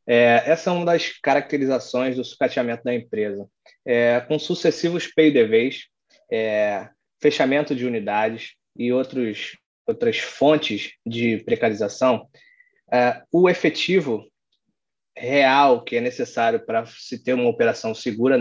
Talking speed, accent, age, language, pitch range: 120 wpm, Brazilian, 20-39, Portuguese, 120-160 Hz